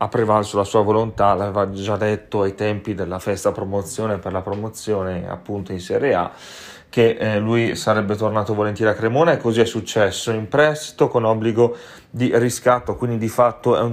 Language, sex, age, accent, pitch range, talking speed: Italian, male, 30-49, native, 105-125 Hz, 180 wpm